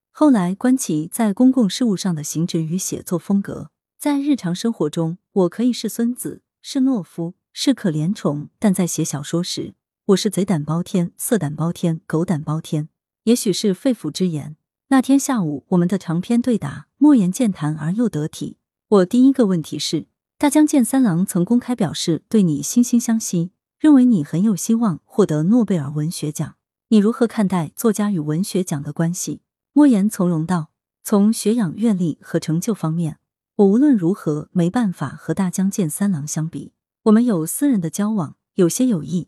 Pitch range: 160-230 Hz